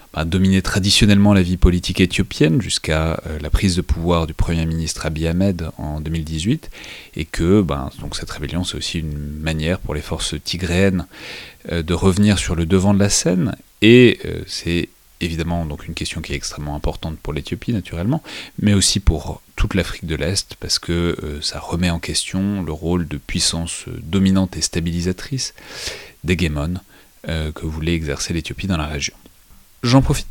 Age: 30-49